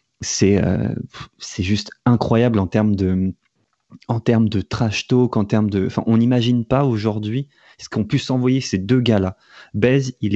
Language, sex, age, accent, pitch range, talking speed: French, male, 30-49, French, 95-120 Hz, 175 wpm